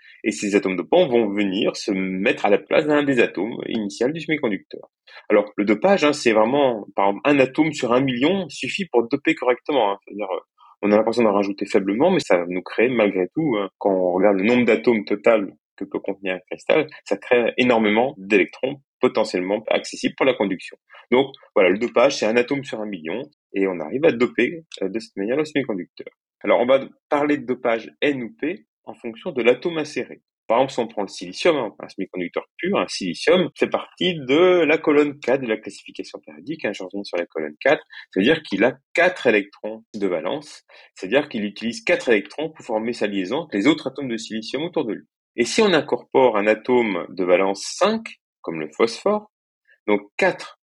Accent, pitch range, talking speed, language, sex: French, 100-145 Hz, 205 wpm, French, male